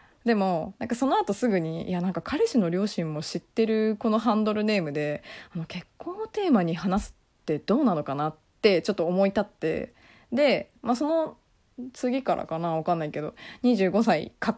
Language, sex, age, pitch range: Japanese, female, 20-39, 165-225 Hz